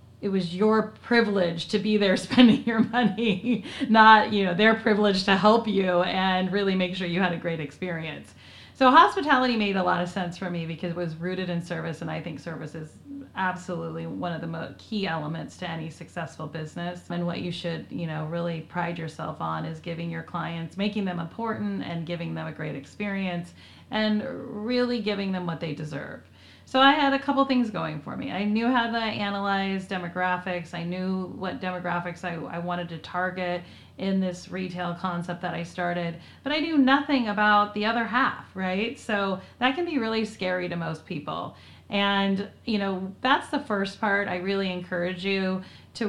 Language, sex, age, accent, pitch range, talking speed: English, female, 30-49, American, 175-215 Hz, 195 wpm